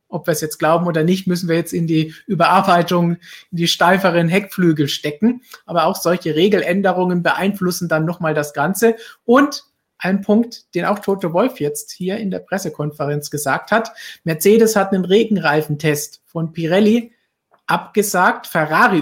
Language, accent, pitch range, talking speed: German, German, 160-195 Hz, 155 wpm